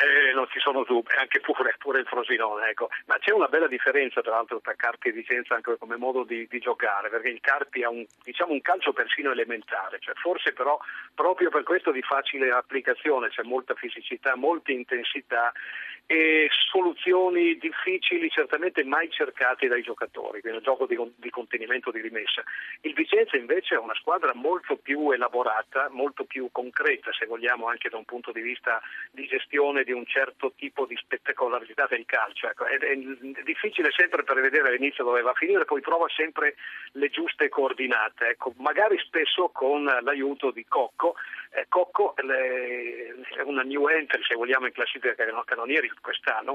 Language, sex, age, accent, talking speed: Italian, male, 50-69, native, 175 wpm